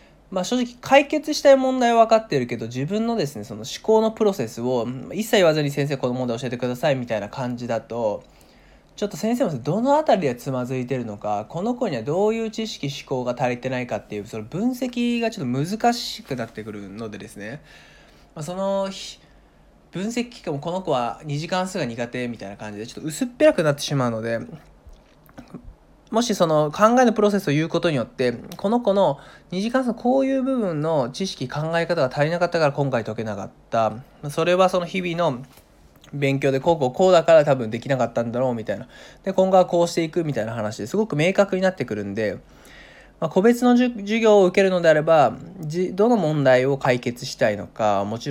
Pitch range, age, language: 125-210 Hz, 20-39, Japanese